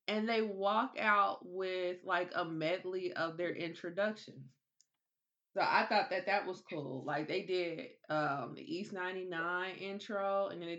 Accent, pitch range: American, 155-200 Hz